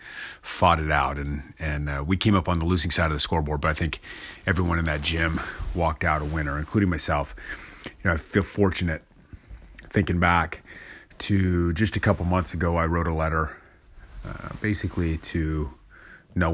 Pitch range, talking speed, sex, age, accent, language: 80-95 Hz, 180 wpm, male, 30-49, American, English